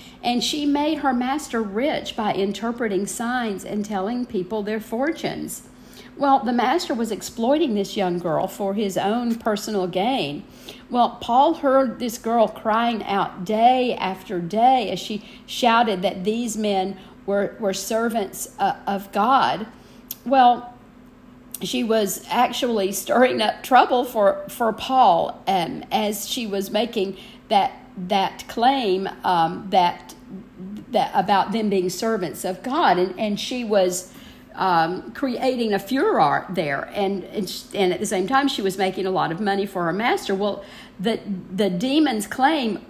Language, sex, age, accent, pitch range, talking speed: English, female, 50-69, American, 195-250 Hz, 150 wpm